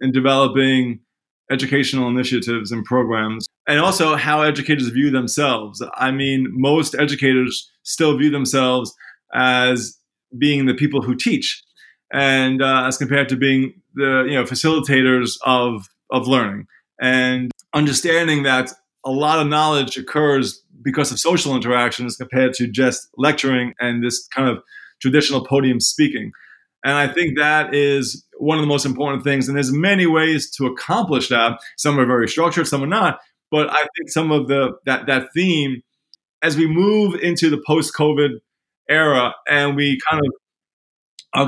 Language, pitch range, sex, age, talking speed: English, 130-150 Hz, male, 20-39, 155 wpm